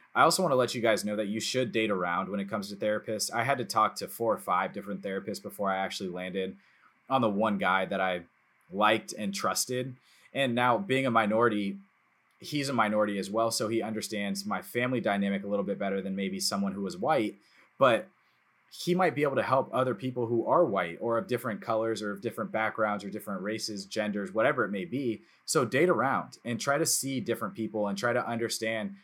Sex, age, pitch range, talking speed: male, 20-39, 105-135 Hz, 225 wpm